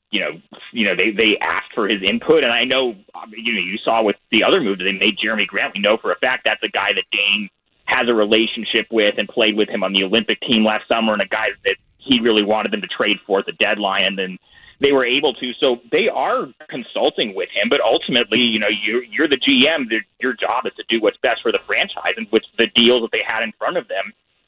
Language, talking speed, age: English, 260 wpm, 30-49